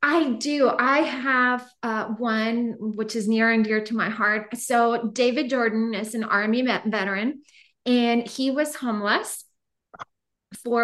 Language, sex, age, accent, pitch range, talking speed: English, female, 30-49, American, 210-240 Hz, 145 wpm